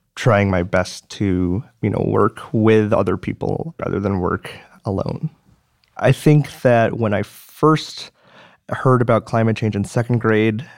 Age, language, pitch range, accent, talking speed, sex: 20-39, English, 100-125 Hz, American, 150 wpm, male